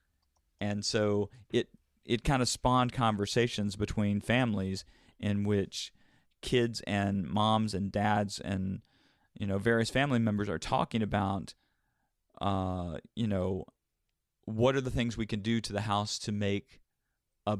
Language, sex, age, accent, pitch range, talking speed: English, male, 40-59, American, 100-120 Hz, 145 wpm